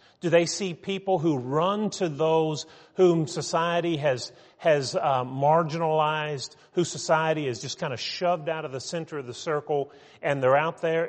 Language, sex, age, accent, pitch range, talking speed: English, male, 40-59, American, 120-160 Hz, 175 wpm